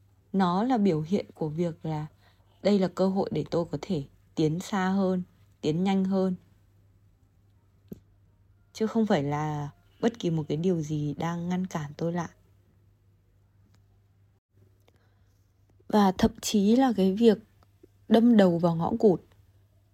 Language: Vietnamese